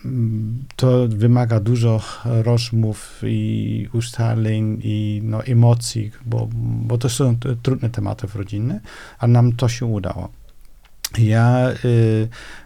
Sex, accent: male, native